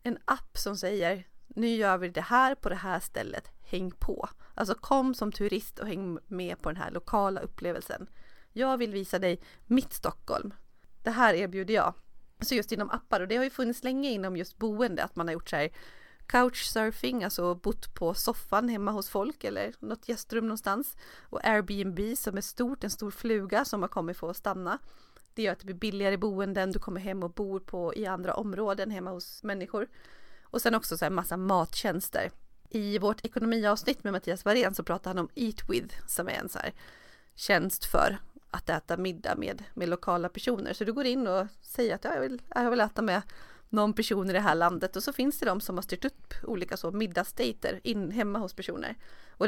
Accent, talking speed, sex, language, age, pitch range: native, 205 wpm, female, Swedish, 30-49, 185-230 Hz